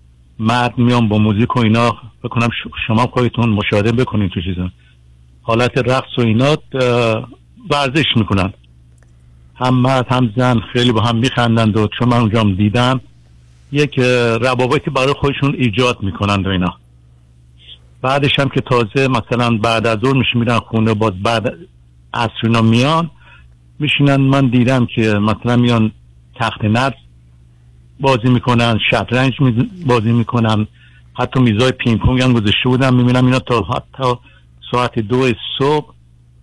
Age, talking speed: 60-79, 135 wpm